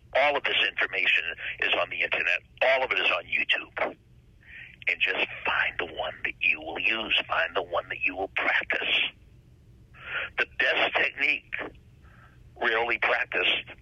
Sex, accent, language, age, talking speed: male, American, English, 60-79, 150 wpm